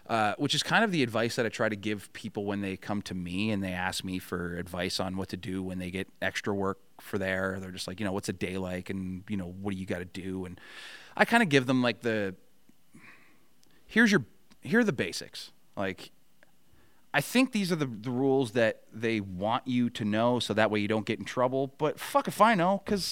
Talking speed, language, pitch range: 245 wpm, English, 95-115 Hz